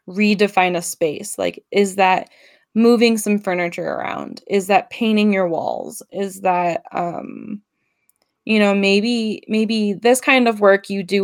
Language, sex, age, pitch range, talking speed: English, female, 20-39, 170-205 Hz, 150 wpm